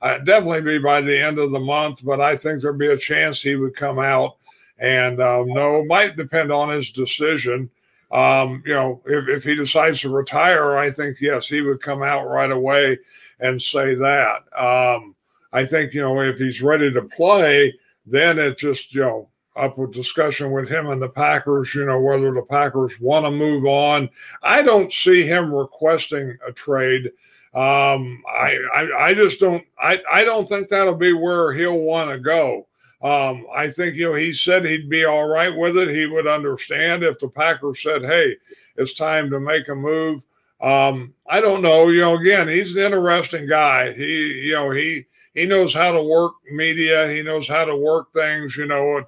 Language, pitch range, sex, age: English, 140-160 Hz, male, 50-69